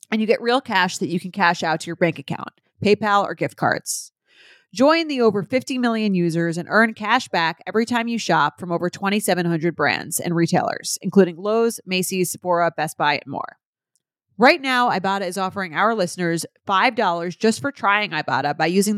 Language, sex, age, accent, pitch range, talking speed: English, female, 30-49, American, 160-210 Hz, 190 wpm